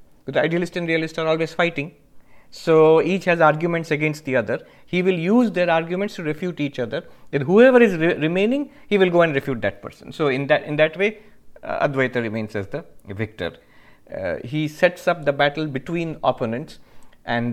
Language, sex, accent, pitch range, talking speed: English, male, Indian, 120-170 Hz, 190 wpm